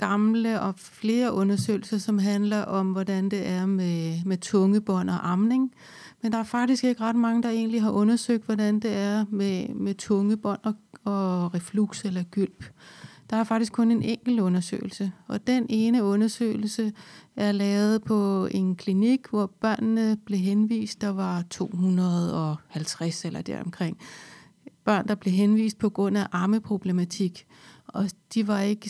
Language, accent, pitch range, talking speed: Danish, native, 195-225 Hz, 150 wpm